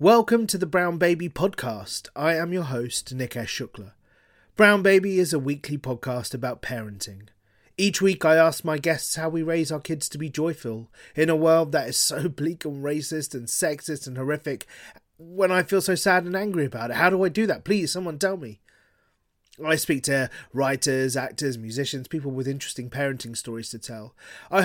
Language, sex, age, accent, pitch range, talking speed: English, male, 30-49, British, 125-165 Hz, 195 wpm